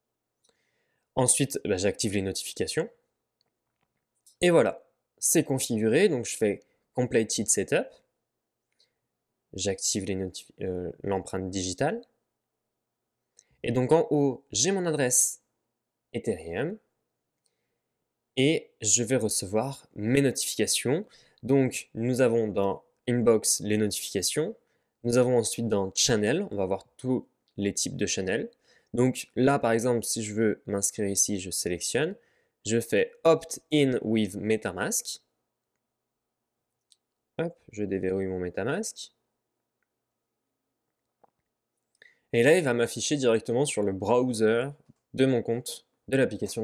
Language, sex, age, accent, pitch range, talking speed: French, male, 20-39, French, 100-125 Hz, 110 wpm